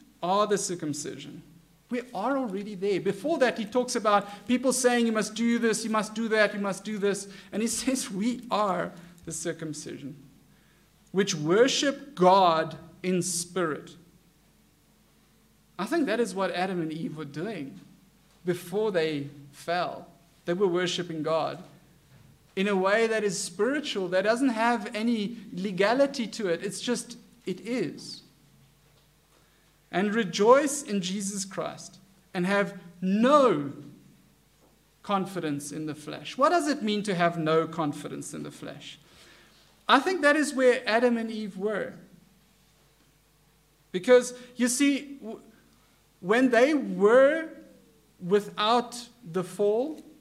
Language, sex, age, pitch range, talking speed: English, male, 50-69, 170-240 Hz, 135 wpm